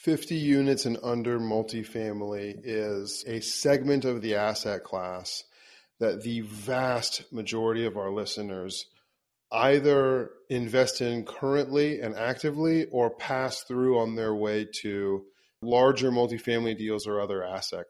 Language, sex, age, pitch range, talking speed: English, male, 30-49, 105-125 Hz, 125 wpm